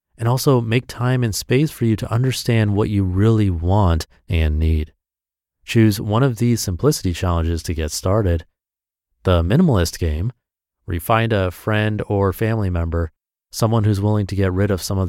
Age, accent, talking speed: 30-49, American, 180 wpm